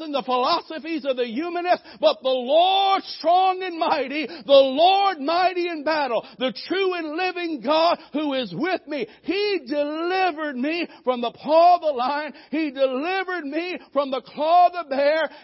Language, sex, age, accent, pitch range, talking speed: English, male, 60-79, American, 255-335 Hz, 170 wpm